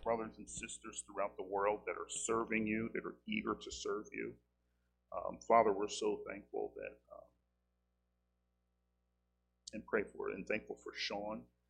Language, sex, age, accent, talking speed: English, male, 40-59, American, 160 wpm